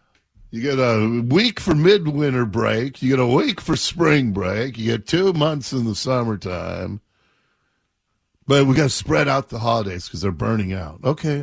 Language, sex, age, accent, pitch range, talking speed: English, male, 50-69, American, 105-150 Hz, 180 wpm